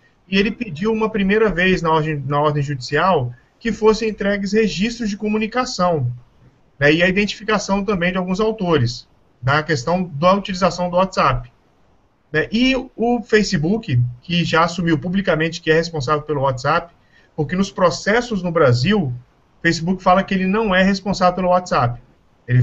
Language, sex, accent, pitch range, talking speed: Portuguese, male, Brazilian, 150-200 Hz, 160 wpm